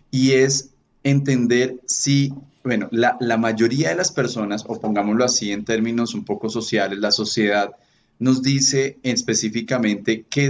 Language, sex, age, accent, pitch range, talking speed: Spanish, male, 30-49, Colombian, 105-125 Hz, 145 wpm